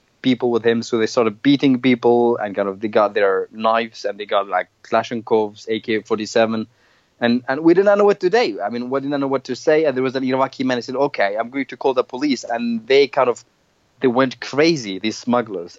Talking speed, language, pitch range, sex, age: 240 wpm, English, 115-135 Hz, male, 30-49